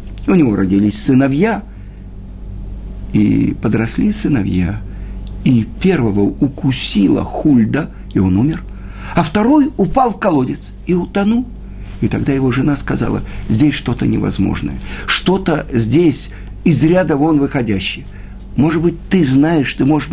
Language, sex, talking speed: Russian, male, 120 wpm